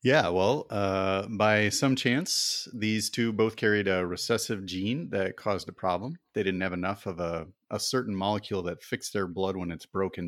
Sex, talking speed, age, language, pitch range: male, 195 wpm, 30-49, English, 90-110 Hz